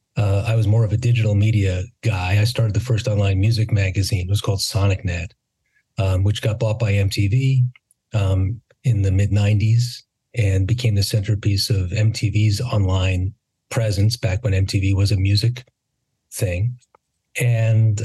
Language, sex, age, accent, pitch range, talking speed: English, male, 40-59, American, 105-125 Hz, 155 wpm